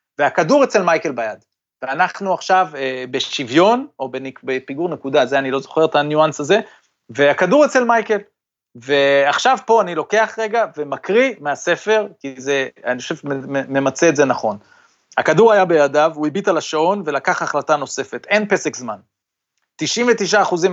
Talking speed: 150 wpm